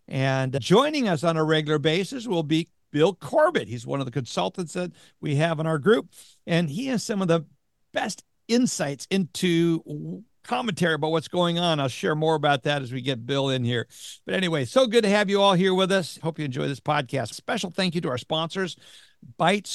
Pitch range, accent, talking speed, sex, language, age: 145-180 Hz, American, 215 wpm, male, English, 60-79